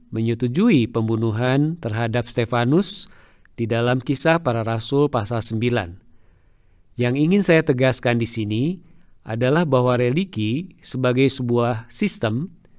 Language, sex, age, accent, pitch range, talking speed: Indonesian, male, 50-69, native, 120-155 Hz, 110 wpm